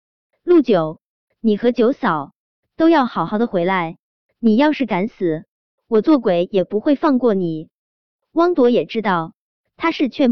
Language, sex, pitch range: Chinese, male, 190-270 Hz